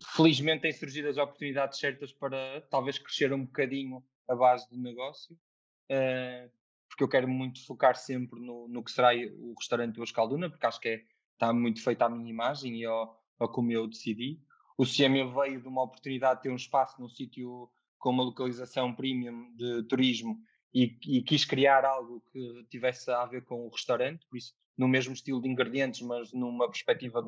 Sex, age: male, 20-39